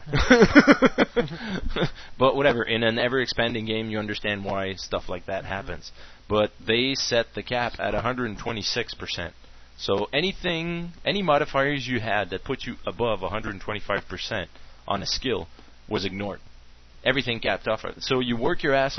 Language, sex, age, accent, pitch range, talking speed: English, male, 30-49, American, 90-120 Hz, 140 wpm